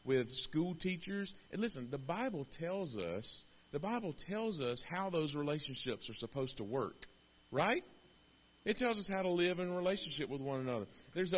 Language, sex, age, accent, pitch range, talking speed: English, male, 40-59, American, 105-170 Hz, 175 wpm